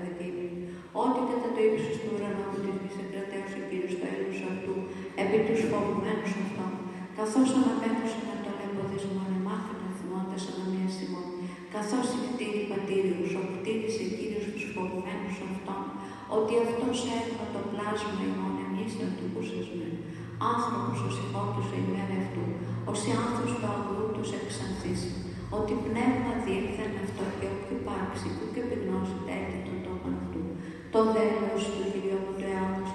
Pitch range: 175-220 Hz